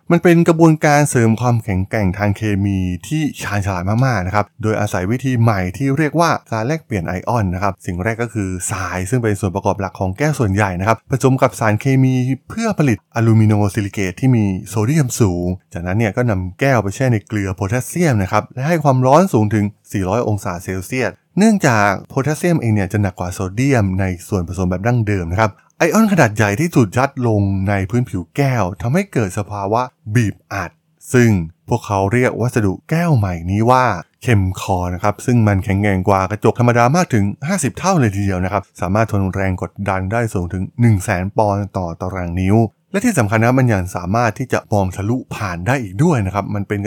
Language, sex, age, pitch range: Thai, male, 20-39, 100-130 Hz